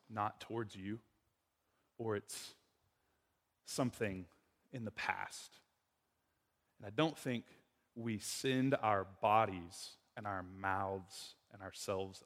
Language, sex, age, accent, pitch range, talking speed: English, male, 20-39, American, 115-165 Hz, 110 wpm